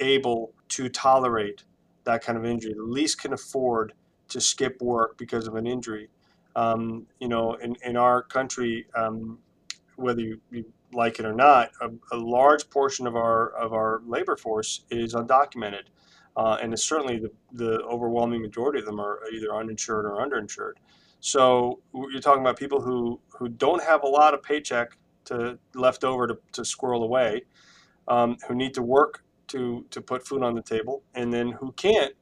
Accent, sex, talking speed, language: American, male, 180 wpm, English